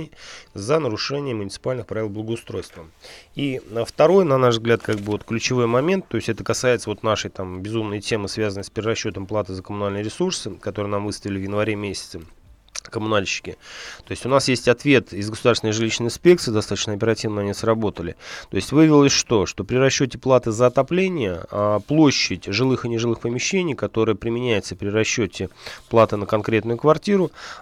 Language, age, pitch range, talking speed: Russian, 30-49, 105-125 Hz, 150 wpm